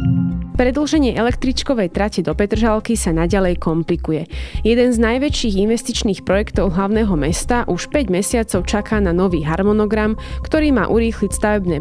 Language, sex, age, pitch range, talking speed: Slovak, female, 20-39, 185-240 Hz, 130 wpm